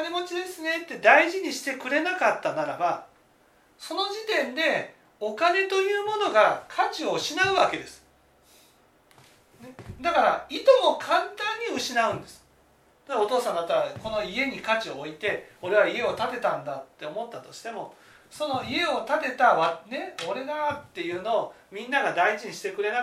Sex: male